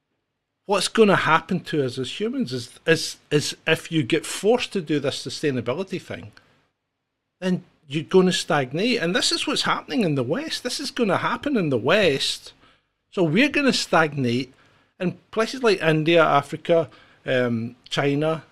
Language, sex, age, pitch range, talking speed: English, male, 50-69, 140-200 Hz, 170 wpm